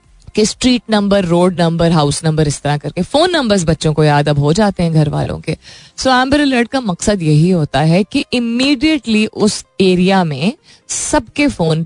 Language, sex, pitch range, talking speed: Hindi, female, 160-220 Hz, 180 wpm